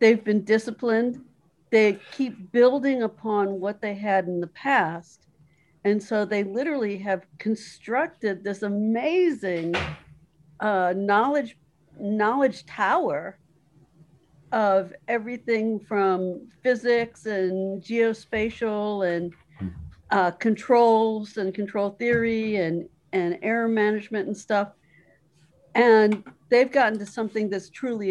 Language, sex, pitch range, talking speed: English, female, 175-220 Hz, 105 wpm